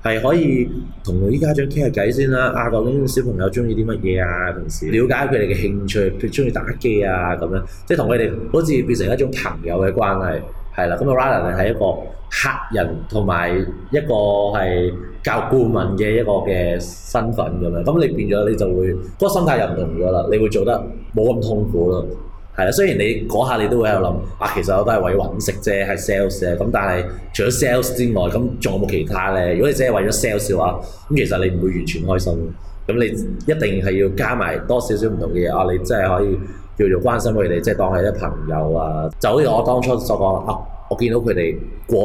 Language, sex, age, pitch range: Chinese, male, 20-39, 90-120 Hz